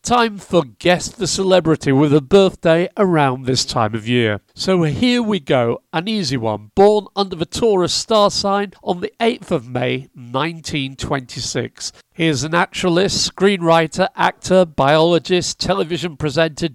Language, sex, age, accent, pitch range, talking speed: English, male, 50-69, British, 130-185 Hz, 145 wpm